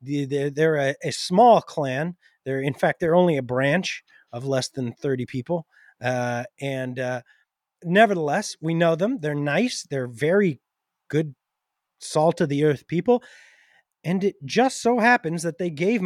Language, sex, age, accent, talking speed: English, male, 30-49, American, 140 wpm